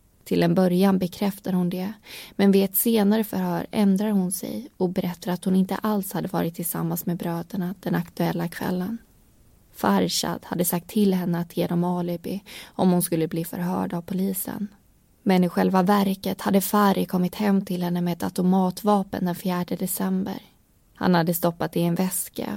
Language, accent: Swedish, native